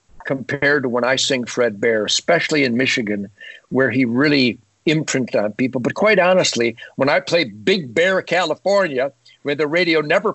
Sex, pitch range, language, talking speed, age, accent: male, 145-210 Hz, English, 170 wpm, 60-79, American